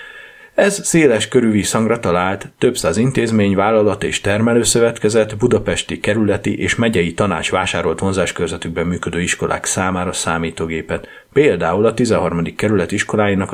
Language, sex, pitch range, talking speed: Hungarian, male, 90-115 Hz, 120 wpm